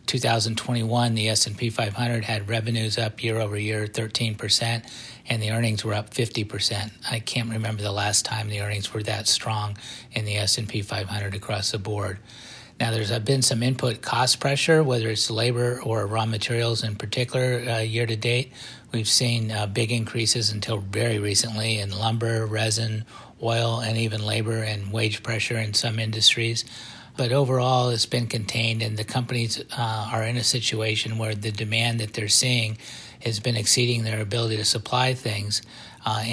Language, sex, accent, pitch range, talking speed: English, male, American, 110-120 Hz, 170 wpm